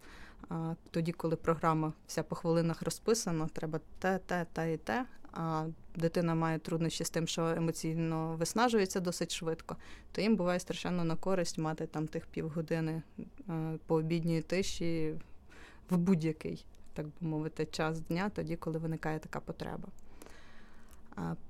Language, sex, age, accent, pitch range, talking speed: Ukrainian, female, 20-39, native, 160-175 Hz, 135 wpm